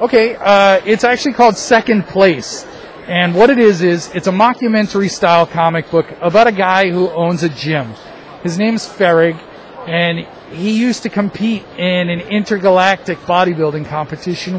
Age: 40-59